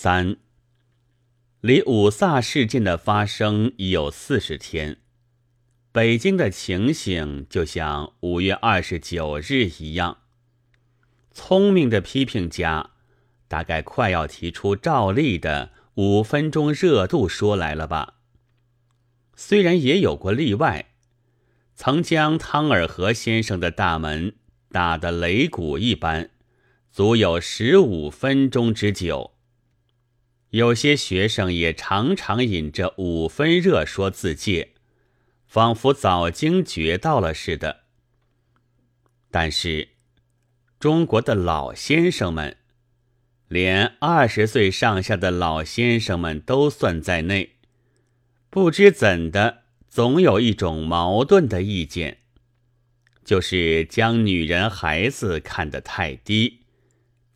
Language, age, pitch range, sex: Chinese, 30-49, 90-120 Hz, male